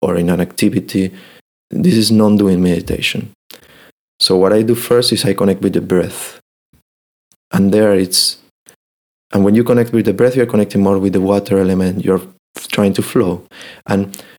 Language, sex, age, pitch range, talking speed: Czech, male, 30-49, 100-120 Hz, 170 wpm